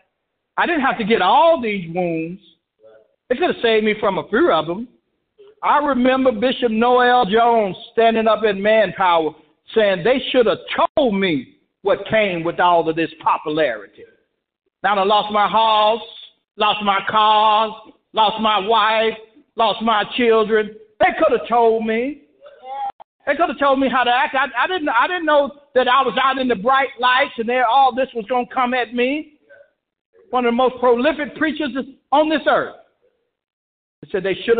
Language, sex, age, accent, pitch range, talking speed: English, male, 60-79, American, 200-280 Hz, 180 wpm